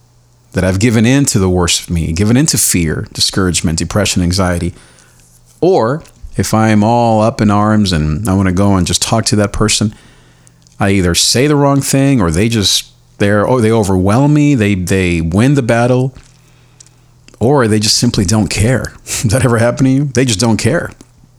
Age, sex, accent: 40-59, male, American